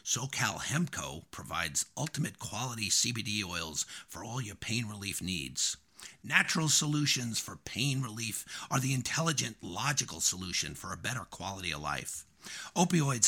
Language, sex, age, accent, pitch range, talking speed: English, male, 50-69, American, 115-160 Hz, 135 wpm